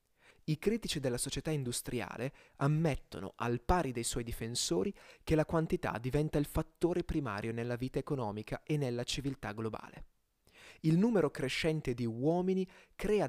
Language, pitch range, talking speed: Italian, 120-155 Hz, 140 wpm